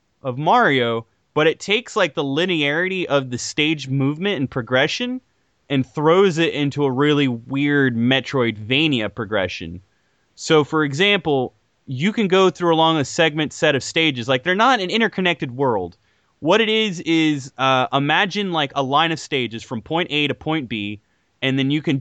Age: 20-39